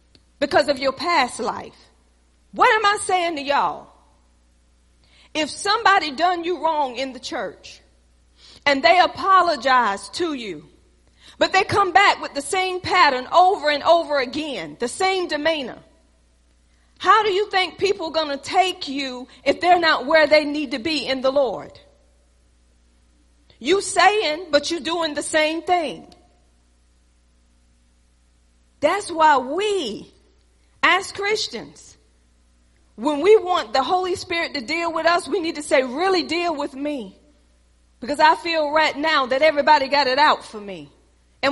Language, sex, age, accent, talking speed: English, female, 40-59, American, 150 wpm